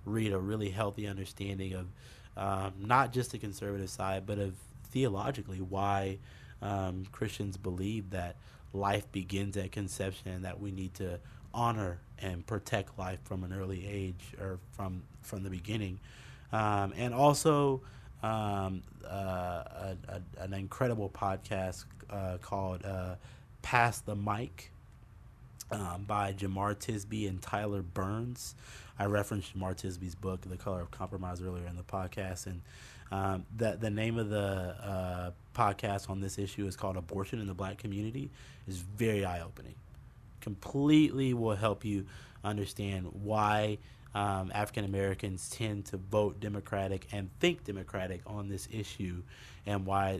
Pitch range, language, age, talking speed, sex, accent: 95-110 Hz, English, 30-49, 145 wpm, male, American